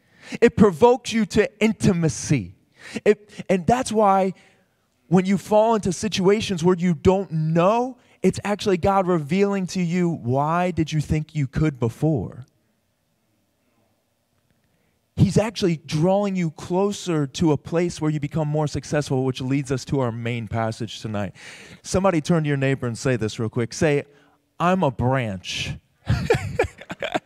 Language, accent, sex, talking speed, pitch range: English, American, male, 145 wpm, 125-175 Hz